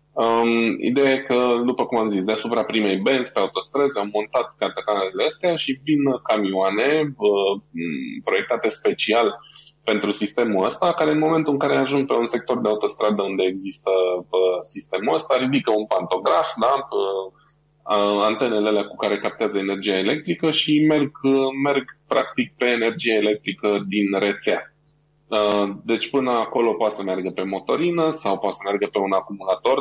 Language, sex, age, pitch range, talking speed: Romanian, male, 20-39, 100-140 Hz, 155 wpm